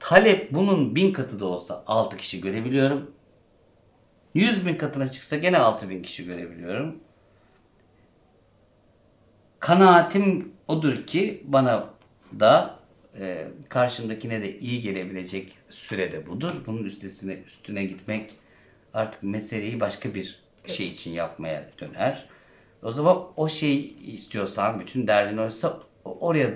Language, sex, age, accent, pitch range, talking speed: Turkish, male, 60-79, native, 100-145 Hz, 115 wpm